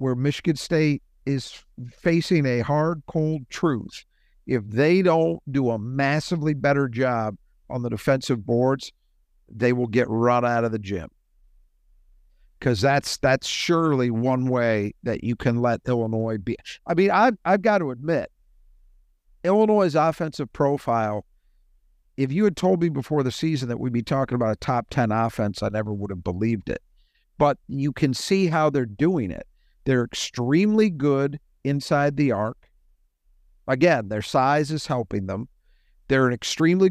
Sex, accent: male, American